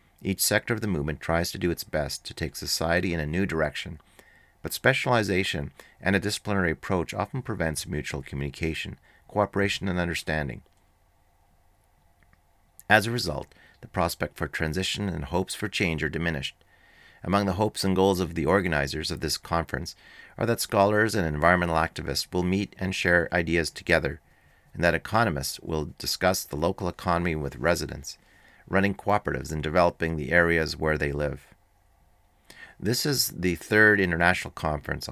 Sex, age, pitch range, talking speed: male, 40-59, 80-95 Hz, 155 wpm